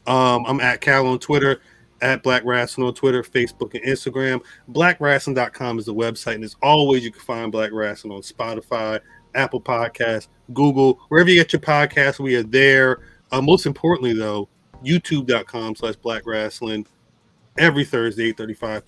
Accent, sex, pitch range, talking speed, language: American, male, 110-140 Hz, 155 wpm, English